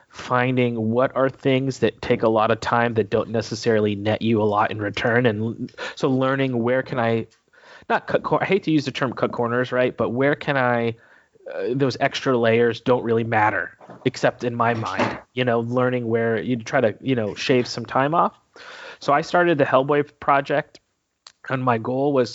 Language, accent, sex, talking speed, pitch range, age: English, American, male, 200 wpm, 115-135 Hz, 30-49